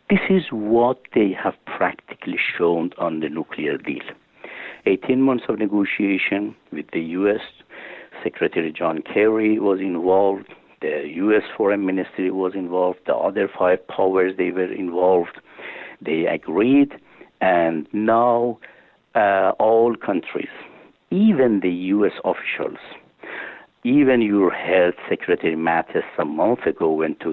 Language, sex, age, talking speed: English, male, 60-79, 125 wpm